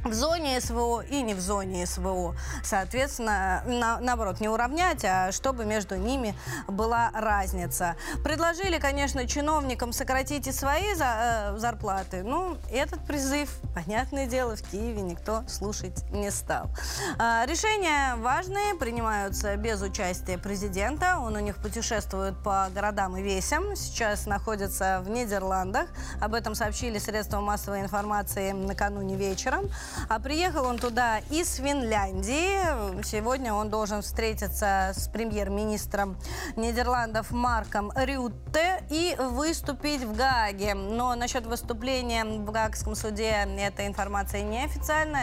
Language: Russian